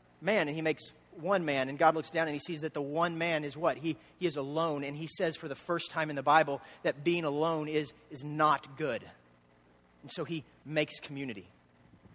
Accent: American